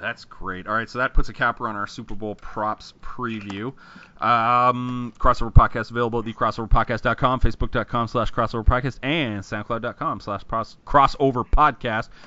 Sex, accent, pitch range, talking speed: male, American, 105-130 Hz, 135 wpm